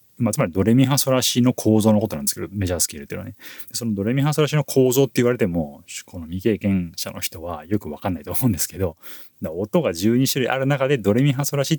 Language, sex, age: Japanese, male, 30-49